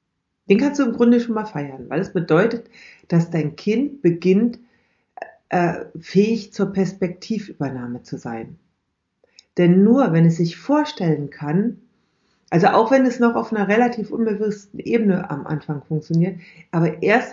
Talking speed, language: 150 wpm, German